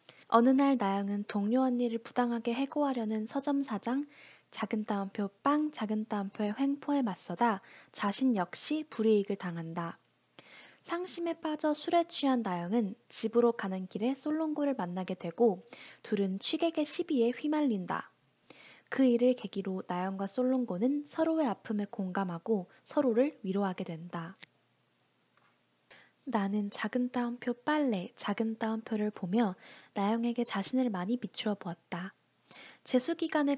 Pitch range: 200-270 Hz